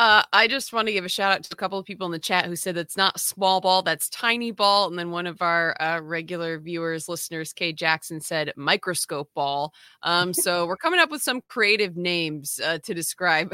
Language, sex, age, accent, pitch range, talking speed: English, female, 30-49, American, 160-185 Hz, 230 wpm